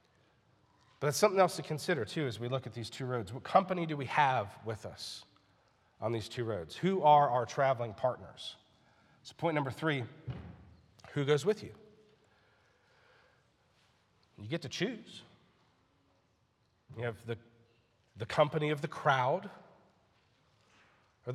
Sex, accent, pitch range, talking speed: male, American, 115-155 Hz, 145 wpm